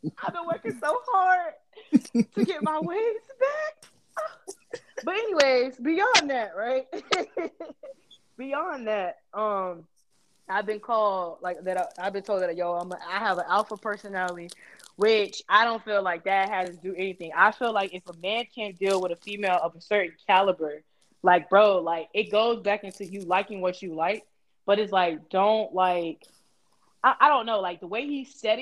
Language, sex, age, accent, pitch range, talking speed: English, female, 20-39, American, 180-230 Hz, 180 wpm